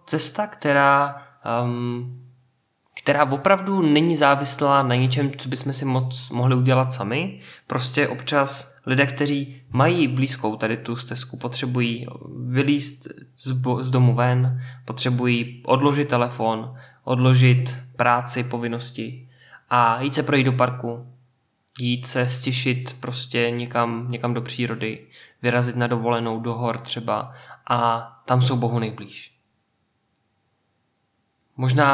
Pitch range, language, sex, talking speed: 125-140 Hz, Czech, male, 120 wpm